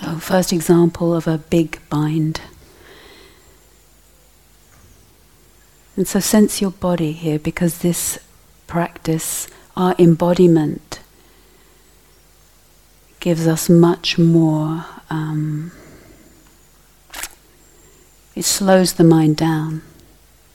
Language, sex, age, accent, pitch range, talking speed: English, female, 40-59, British, 155-175 Hz, 80 wpm